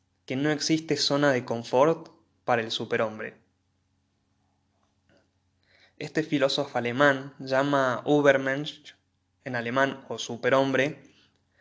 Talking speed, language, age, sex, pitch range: 95 wpm, Spanish, 20-39, male, 100-140 Hz